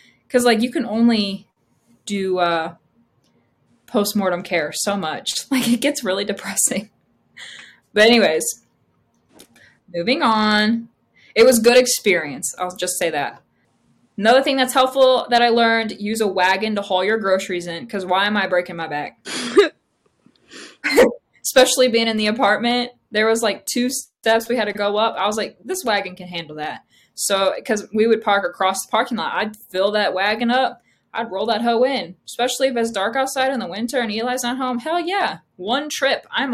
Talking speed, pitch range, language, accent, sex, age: 180 wpm, 200-255 Hz, English, American, female, 20-39